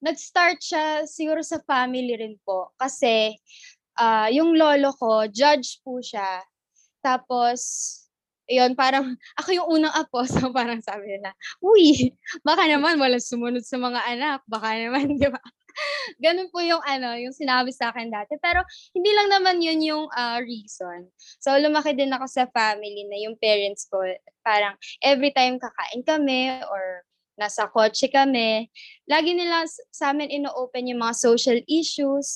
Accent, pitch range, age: native, 225-300 Hz, 20-39